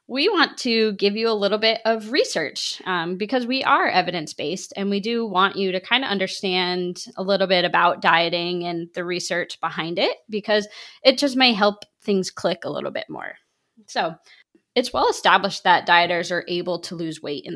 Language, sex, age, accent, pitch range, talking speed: English, female, 20-39, American, 175-215 Hz, 200 wpm